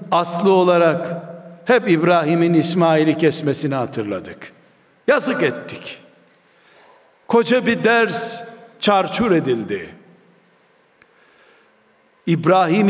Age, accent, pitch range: 60-79, native, 175-250 Hz